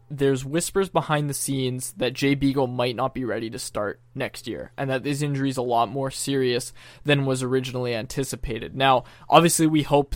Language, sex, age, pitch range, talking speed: English, male, 20-39, 125-150 Hz, 195 wpm